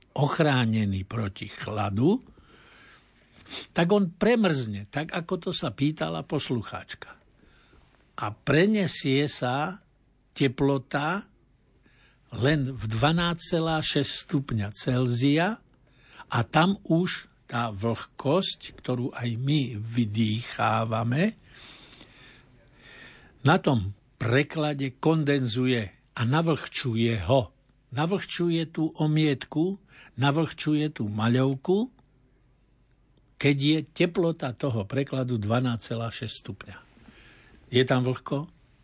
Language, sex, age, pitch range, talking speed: Slovak, male, 60-79, 115-150 Hz, 80 wpm